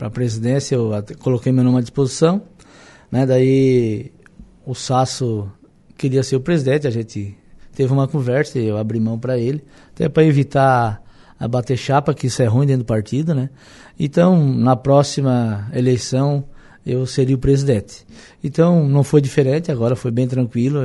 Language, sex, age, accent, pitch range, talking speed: Portuguese, male, 20-39, Brazilian, 115-140 Hz, 165 wpm